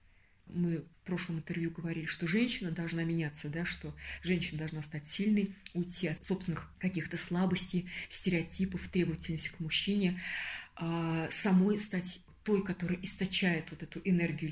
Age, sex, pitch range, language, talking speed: 20-39, female, 160-185 Hz, Russian, 130 wpm